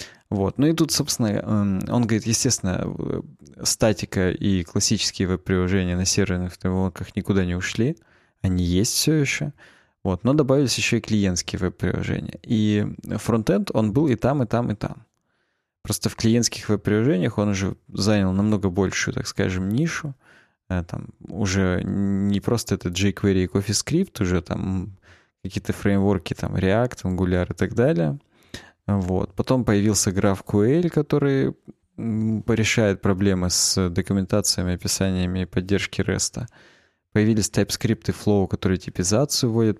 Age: 20-39